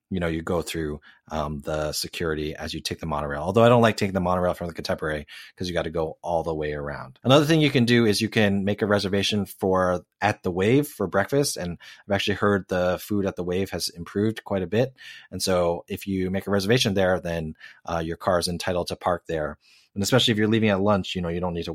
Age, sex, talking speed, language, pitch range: 30-49, male, 255 wpm, English, 90-110 Hz